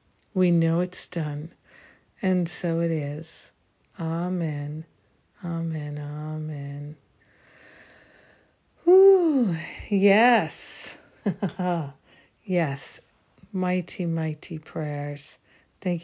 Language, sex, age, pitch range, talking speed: English, female, 50-69, 165-190 Hz, 65 wpm